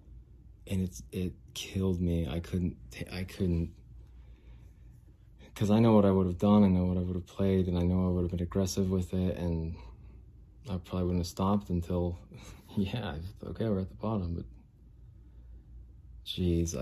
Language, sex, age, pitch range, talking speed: English, male, 30-49, 85-95 Hz, 175 wpm